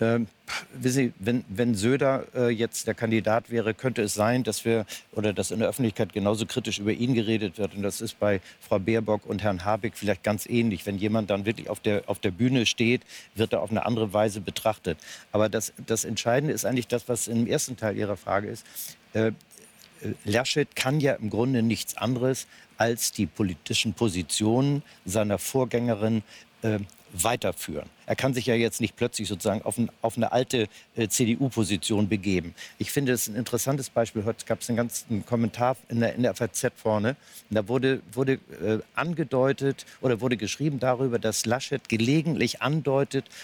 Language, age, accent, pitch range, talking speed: German, 60-79, German, 110-130 Hz, 185 wpm